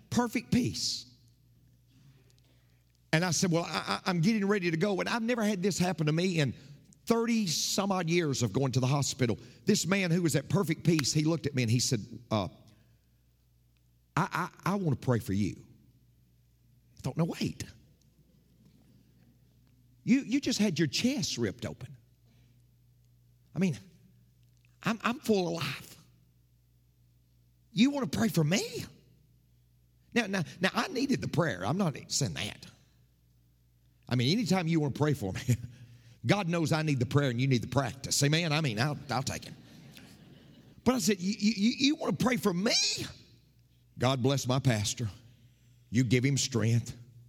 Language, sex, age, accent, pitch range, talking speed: English, male, 50-69, American, 120-170 Hz, 170 wpm